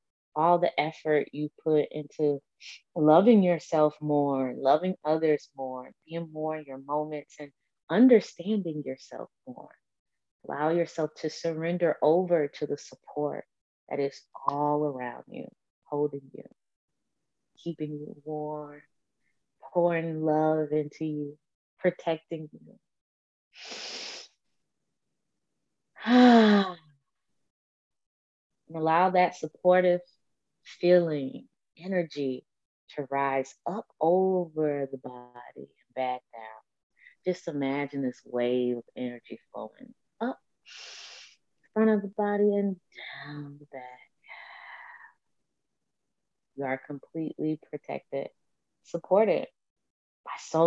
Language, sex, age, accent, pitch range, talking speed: English, female, 20-39, American, 140-170 Hz, 100 wpm